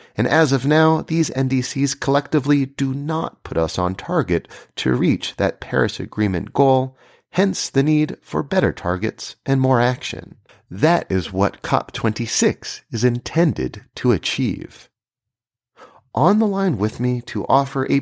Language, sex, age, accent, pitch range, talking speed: English, male, 40-59, American, 115-150 Hz, 145 wpm